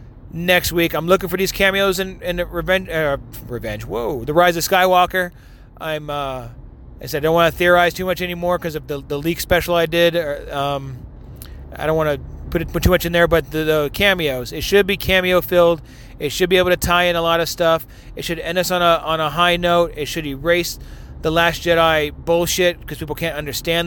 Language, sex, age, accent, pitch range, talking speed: English, male, 30-49, American, 140-180 Hz, 225 wpm